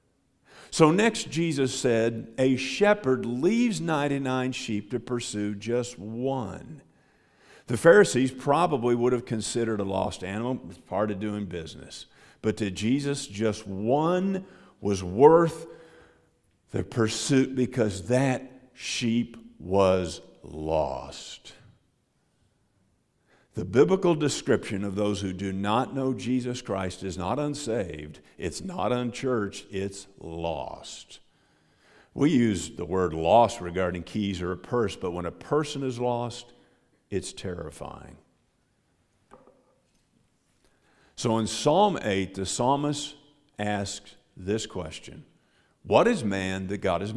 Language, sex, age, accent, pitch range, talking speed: English, male, 50-69, American, 100-130 Hz, 115 wpm